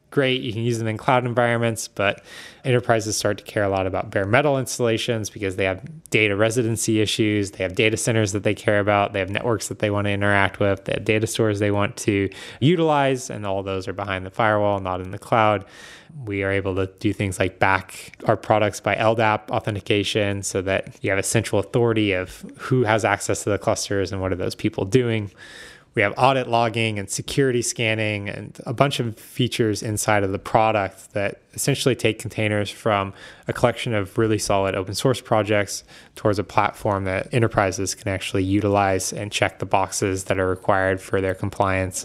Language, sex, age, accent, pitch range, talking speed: English, male, 20-39, American, 100-115 Hz, 200 wpm